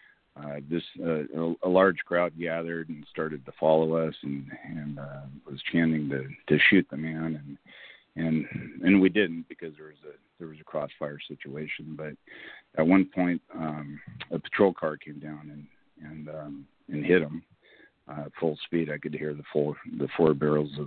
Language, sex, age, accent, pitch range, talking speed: English, male, 50-69, American, 75-80 Hz, 190 wpm